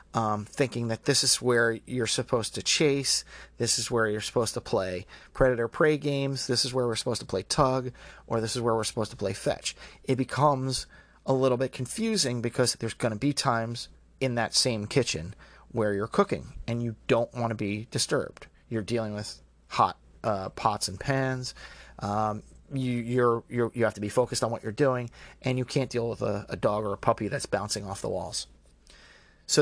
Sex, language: male, English